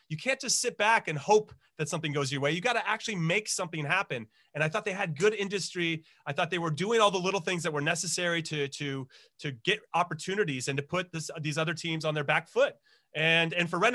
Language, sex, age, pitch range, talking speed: English, male, 30-49, 140-170 Hz, 240 wpm